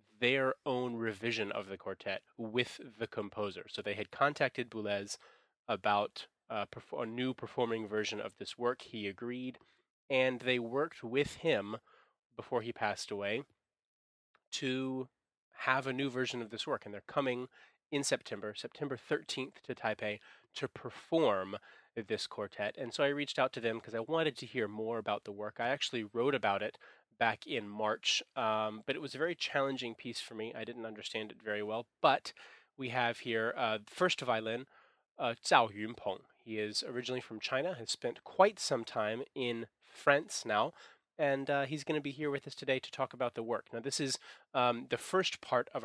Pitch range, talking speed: 115-135 Hz, 185 wpm